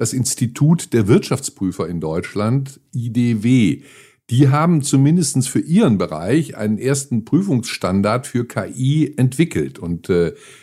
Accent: German